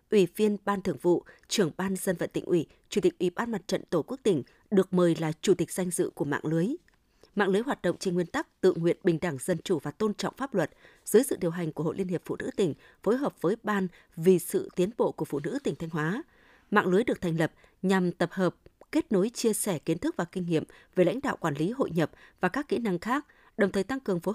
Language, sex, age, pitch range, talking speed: Vietnamese, female, 20-39, 170-215 Hz, 265 wpm